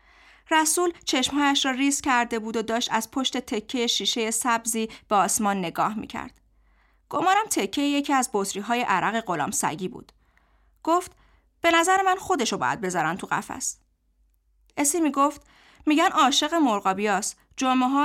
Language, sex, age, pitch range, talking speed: Persian, female, 30-49, 215-285 Hz, 140 wpm